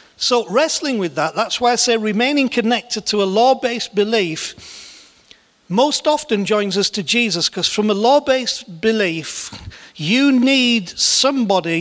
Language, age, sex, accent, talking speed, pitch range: English, 40-59, male, British, 150 wpm, 190-245 Hz